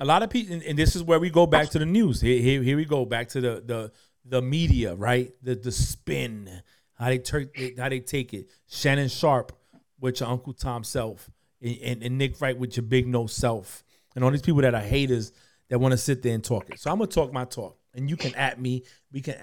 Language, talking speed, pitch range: English, 255 wpm, 120-150 Hz